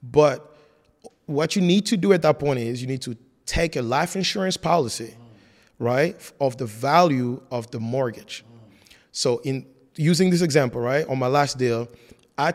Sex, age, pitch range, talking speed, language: male, 30-49, 125-160 Hz, 170 wpm, English